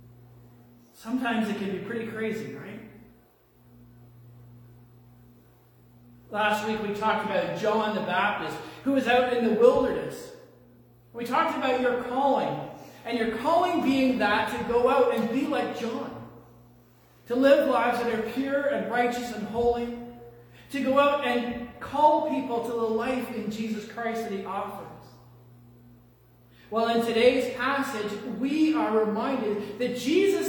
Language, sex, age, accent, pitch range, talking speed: English, male, 40-59, American, 170-265 Hz, 140 wpm